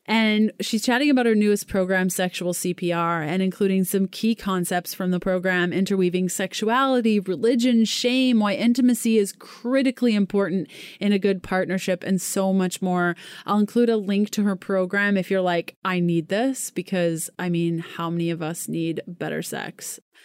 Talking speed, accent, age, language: 170 wpm, American, 30-49, English